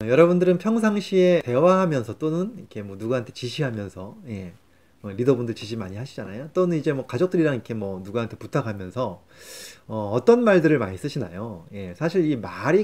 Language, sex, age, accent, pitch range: Korean, male, 30-49, native, 100-160 Hz